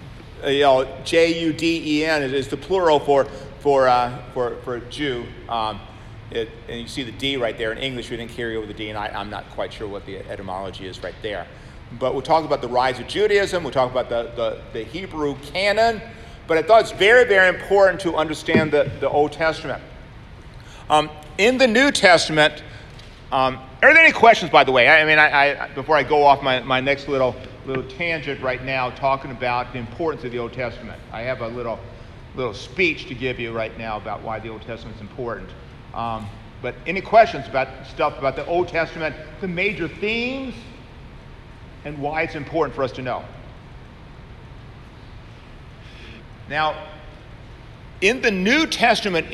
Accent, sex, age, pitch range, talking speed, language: American, male, 40-59, 120-160 Hz, 185 wpm, English